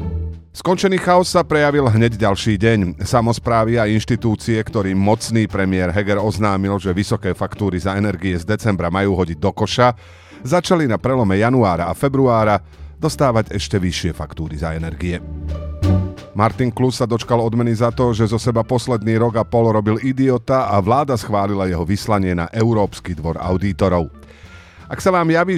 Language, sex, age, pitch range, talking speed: Slovak, male, 40-59, 95-125 Hz, 155 wpm